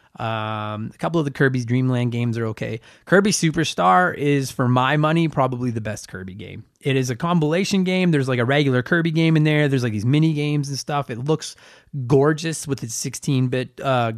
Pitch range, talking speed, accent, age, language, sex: 120-165 Hz, 205 wpm, American, 20-39, English, male